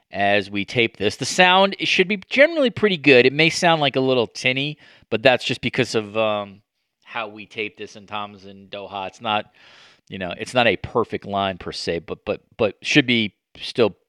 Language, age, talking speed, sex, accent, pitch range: English, 40-59, 210 wpm, male, American, 100-145 Hz